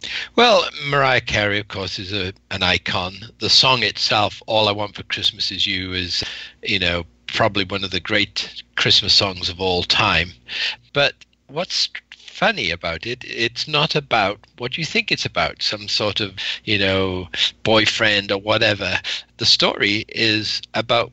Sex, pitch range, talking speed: male, 95-110 Hz, 160 wpm